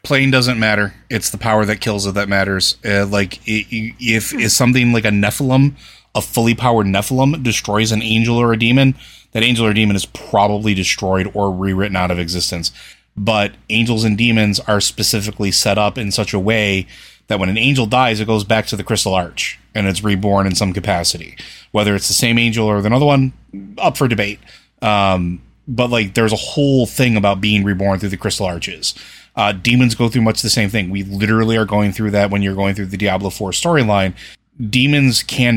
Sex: male